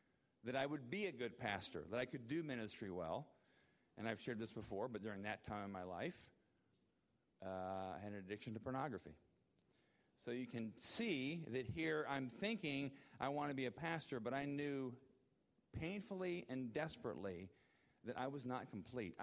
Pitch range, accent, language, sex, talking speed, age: 115-150 Hz, American, English, male, 175 wpm, 40-59